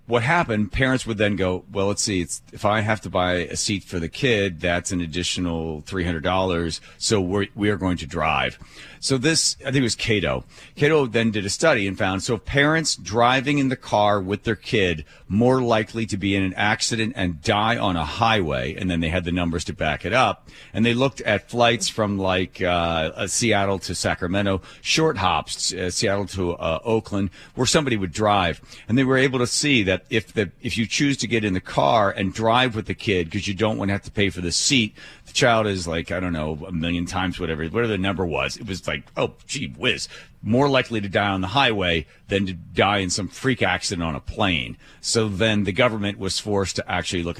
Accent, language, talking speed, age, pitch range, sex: American, English, 225 wpm, 40-59, 90-115 Hz, male